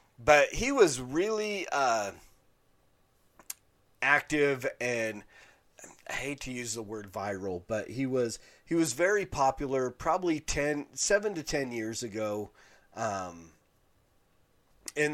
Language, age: English, 40-59